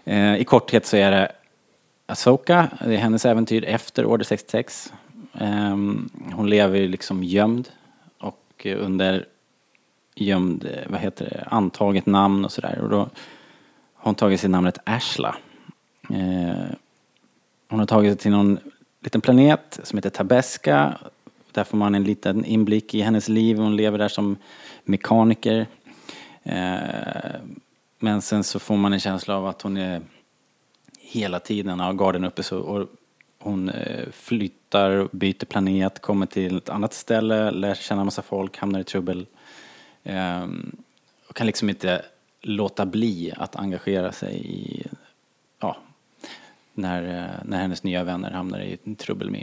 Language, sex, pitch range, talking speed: Swedish, male, 95-110 Hz, 140 wpm